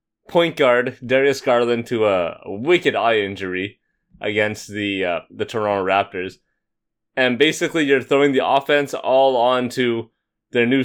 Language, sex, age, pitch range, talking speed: English, male, 20-39, 110-145 Hz, 145 wpm